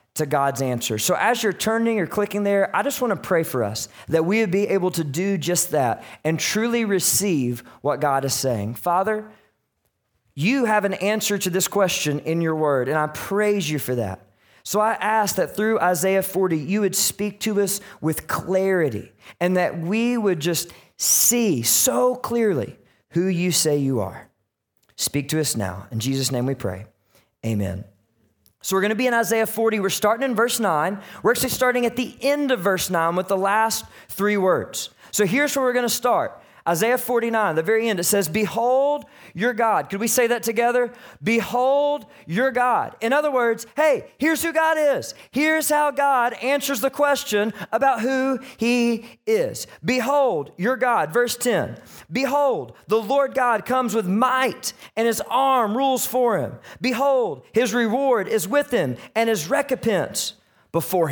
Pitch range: 160-245 Hz